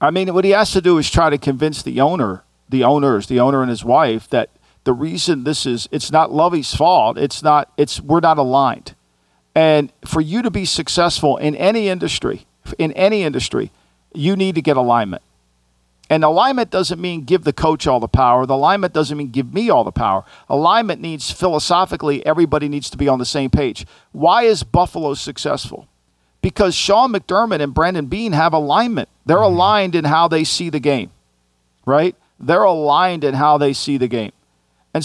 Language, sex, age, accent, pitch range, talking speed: English, male, 50-69, American, 135-175 Hz, 190 wpm